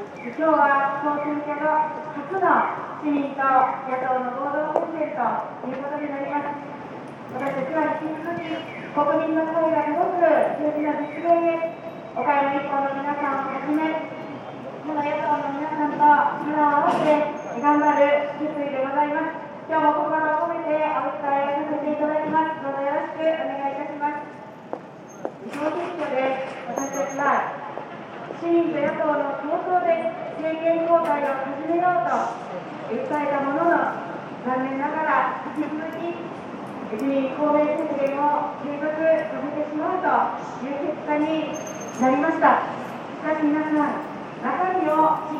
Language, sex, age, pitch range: Japanese, female, 30-49, 285-320 Hz